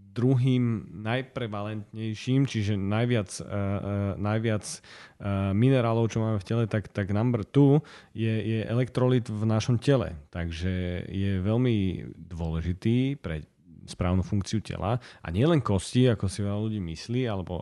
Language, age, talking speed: Slovak, 30-49, 135 wpm